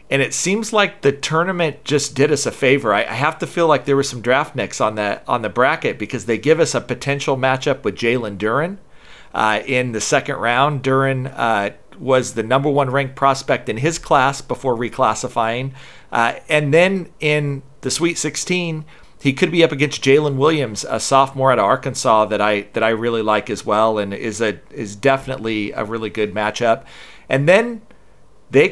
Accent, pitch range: American, 120-155 Hz